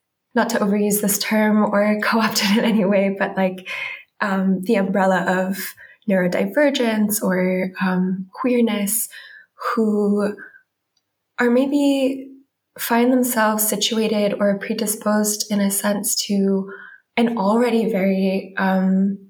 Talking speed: 115 wpm